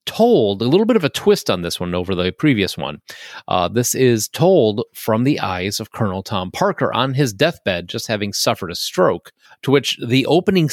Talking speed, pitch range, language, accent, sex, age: 205 wpm, 100-135 Hz, English, American, male, 30-49